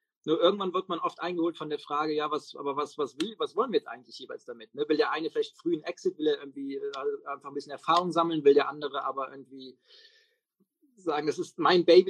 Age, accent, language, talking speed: 30-49, German, German, 240 wpm